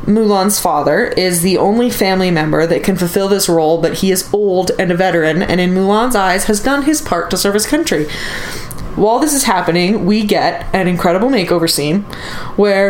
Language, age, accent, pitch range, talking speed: English, 20-39, American, 170-210 Hz, 195 wpm